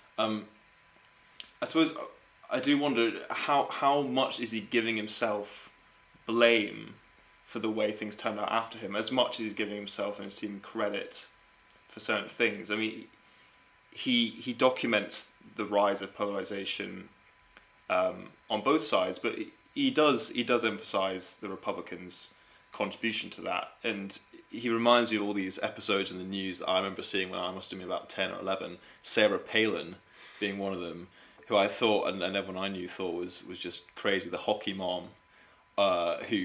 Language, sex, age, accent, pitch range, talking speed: English, male, 20-39, British, 100-120 Hz, 175 wpm